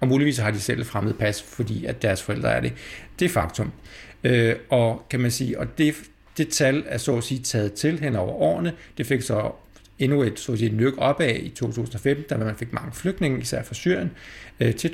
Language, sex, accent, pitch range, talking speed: Danish, male, native, 110-145 Hz, 220 wpm